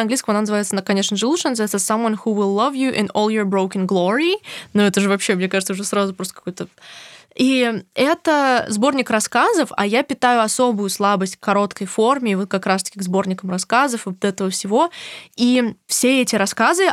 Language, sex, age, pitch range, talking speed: Russian, female, 20-39, 200-250 Hz, 185 wpm